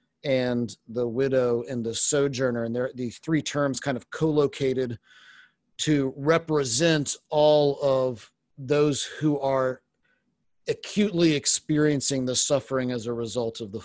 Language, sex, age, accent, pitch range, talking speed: English, male, 40-59, American, 125-150 Hz, 130 wpm